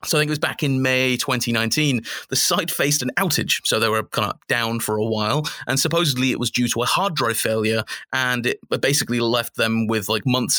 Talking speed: 230 wpm